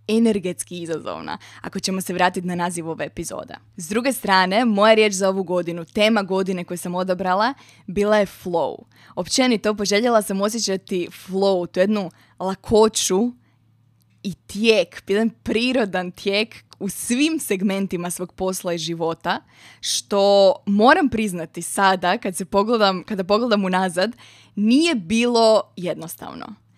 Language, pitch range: Croatian, 180-220 Hz